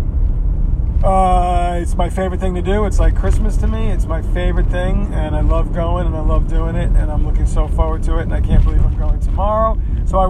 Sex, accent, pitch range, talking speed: male, American, 75-95 Hz, 240 wpm